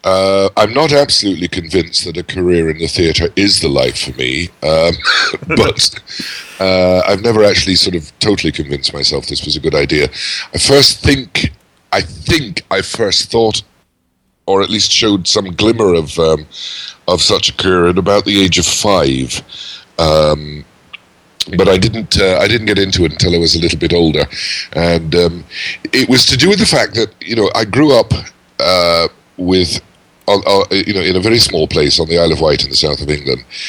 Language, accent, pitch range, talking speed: English, British, 80-95 Hz, 200 wpm